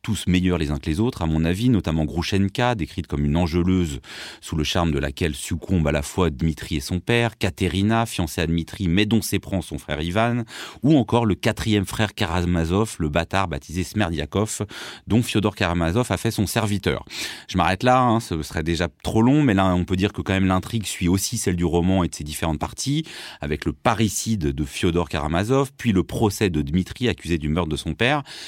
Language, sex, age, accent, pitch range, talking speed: French, male, 30-49, French, 85-110 Hz, 215 wpm